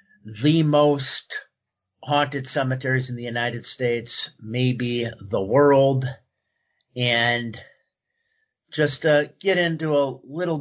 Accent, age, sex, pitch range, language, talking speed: American, 50-69, male, 120-145 Hz, English, 100 wpm